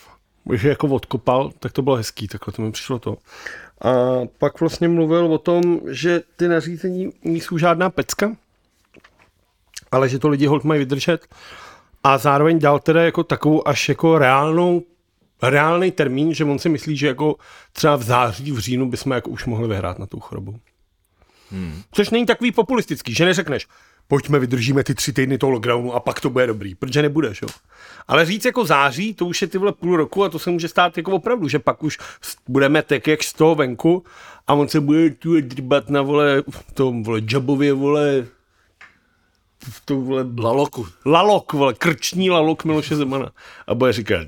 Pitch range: 125-165 Hz